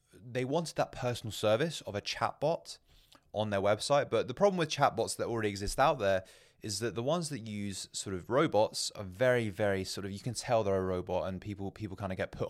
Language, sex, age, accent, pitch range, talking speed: English, male, 20-39, British, 95-115 Hz, 240 wpm